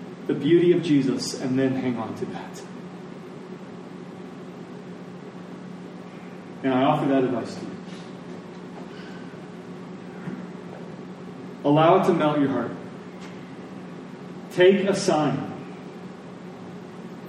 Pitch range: 155-190 Hz